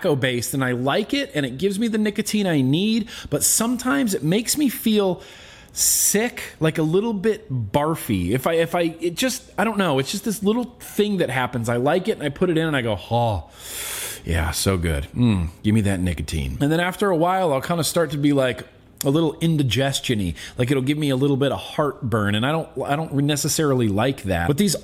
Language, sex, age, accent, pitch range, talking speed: English, male, 30-49, American, 135-190 Hz, 230 wpm